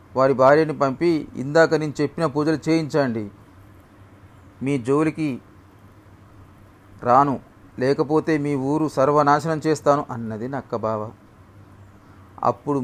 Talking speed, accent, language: 95 wpm, native, Telugu